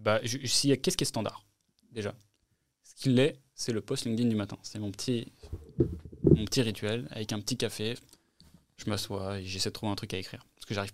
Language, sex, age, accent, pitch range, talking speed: French, male, 20-39, French, 100-115 Hz, 225 wpm